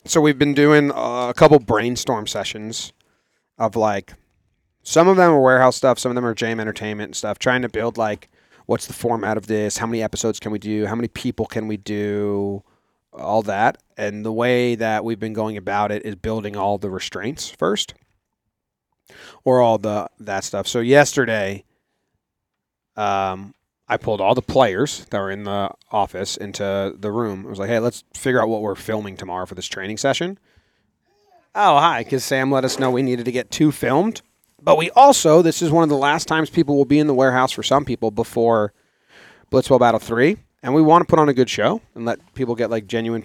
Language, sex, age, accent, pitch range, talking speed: English, male, 30-49, American, 105-130 Hz, 210 wpm